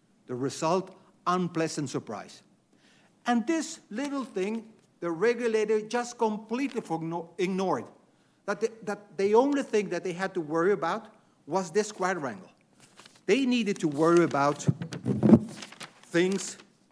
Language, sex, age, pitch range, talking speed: English, male, 50-69, 160-220 Hz, 115 wpm